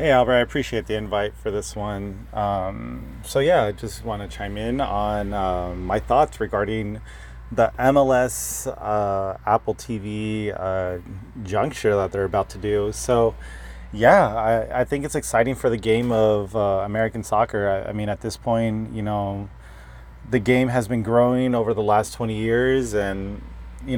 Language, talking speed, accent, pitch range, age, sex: English, 175 wpm, American, 105-120 Hz, 30-49, male